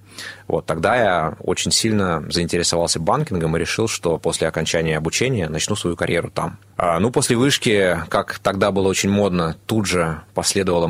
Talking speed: 155 wpm